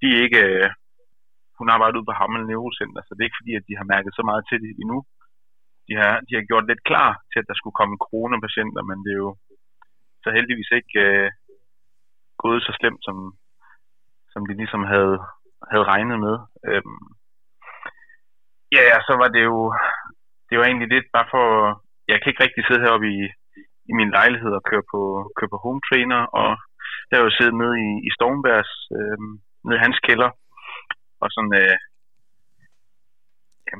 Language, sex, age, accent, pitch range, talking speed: Danish, male, 30-49, native, 100-115 Hz, 180 wpm